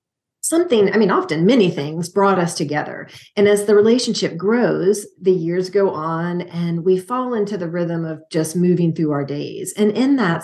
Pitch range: 165-215 Hz